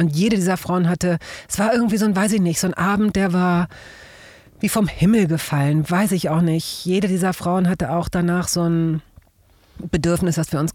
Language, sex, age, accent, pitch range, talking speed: German, female, 40-59, German, 165-195 Hz, 210 wpm